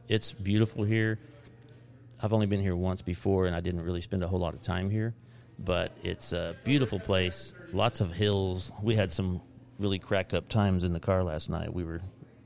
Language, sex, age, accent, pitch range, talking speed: English, male, 40-59, American, 90-115 Hz, 200 wpm